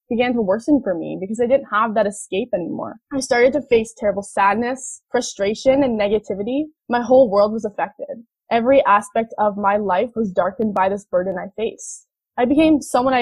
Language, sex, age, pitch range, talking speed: English, female, 10-29, 210-260 Hz, 190 wpm